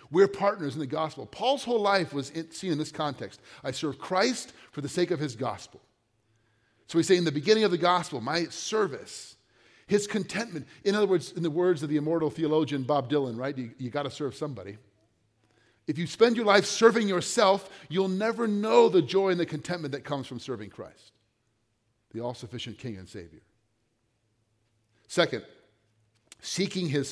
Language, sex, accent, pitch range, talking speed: English, male, American, 115-175 Hz, 180 wpm